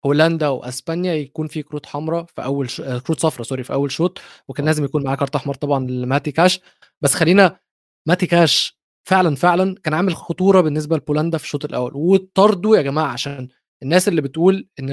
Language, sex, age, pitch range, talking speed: Arabic, male, 20-39, 140-180 Hz, 185 wpm